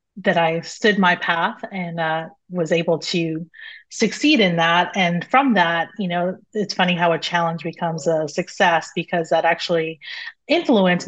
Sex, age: female, 30-49